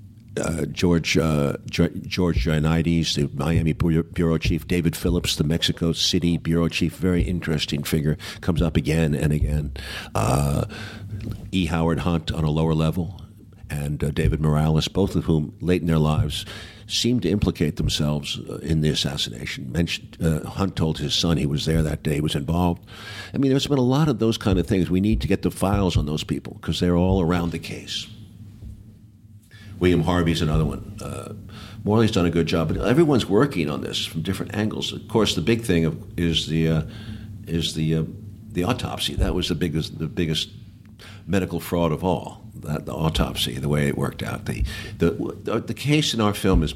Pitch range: 80-105 Hz